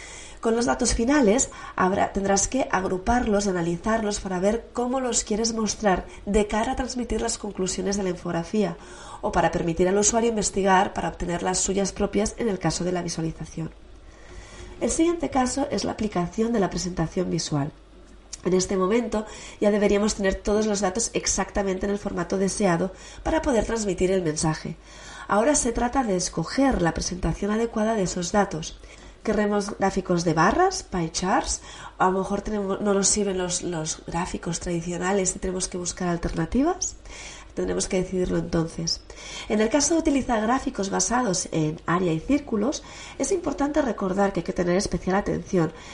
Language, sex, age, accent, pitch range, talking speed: Spanish, female, 30-49, Spanish, 175-220 Hz, 165 wpm